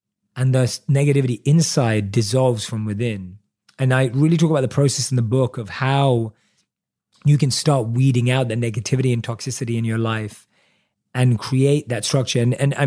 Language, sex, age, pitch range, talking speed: English, male, 30-49, 120-160 Hz, 175 wpm